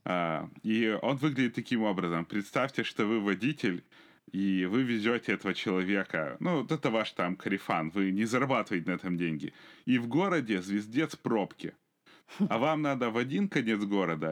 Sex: male